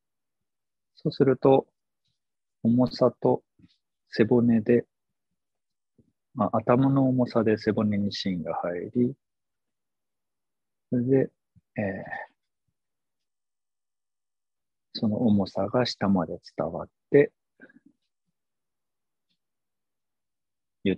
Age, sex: 50-69, male